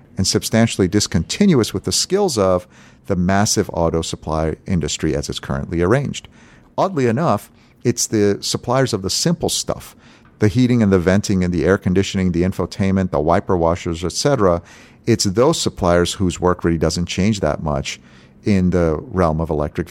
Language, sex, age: English, male, 50-69